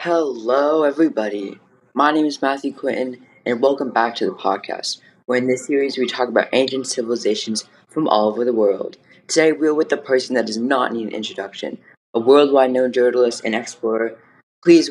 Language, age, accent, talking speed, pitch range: English, 10-29, American, 180 wpm, 110-155 Hz